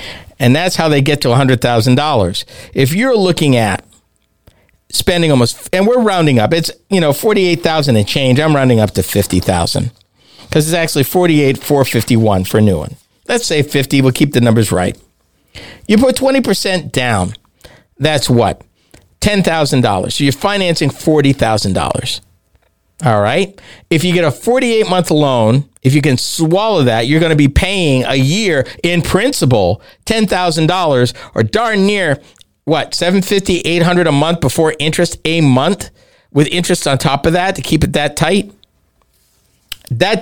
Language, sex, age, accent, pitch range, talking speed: English, male, 50-69, American, 120-180 Hz, 150 wpm